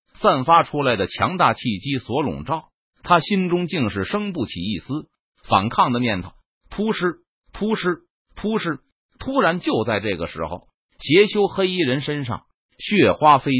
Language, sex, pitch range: Chinese, male, 120-180 Hz